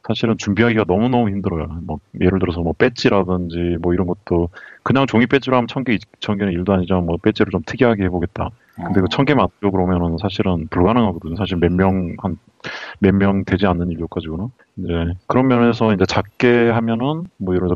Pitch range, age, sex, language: 90-110 Hz, 30-49, male, Korean